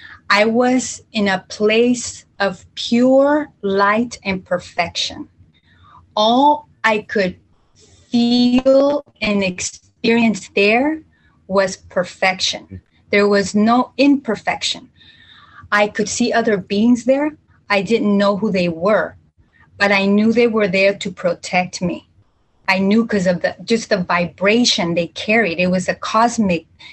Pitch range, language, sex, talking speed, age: 185-235 Hz, English, female, 130 wpm, 30-49